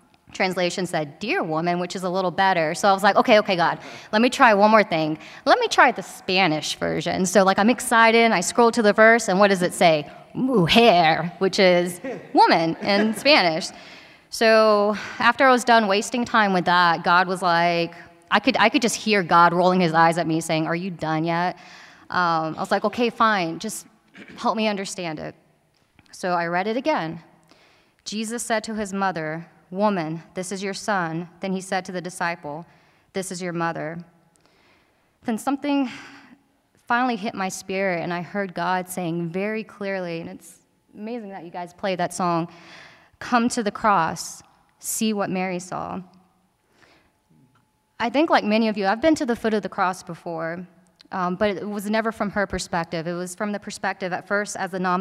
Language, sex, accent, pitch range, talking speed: English, female, American, 170-215 Hz, 195 wpm